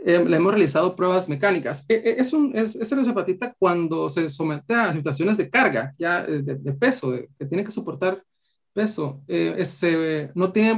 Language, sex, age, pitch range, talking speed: Spanish, male, 30-49, 145-185 Hz, 195 wpm